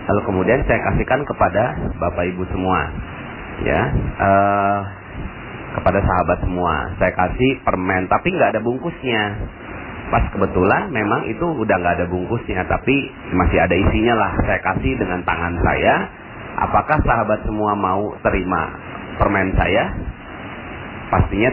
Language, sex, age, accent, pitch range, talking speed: Indonesian, male, 40-59, native, 90-115 Hz, 130 wpm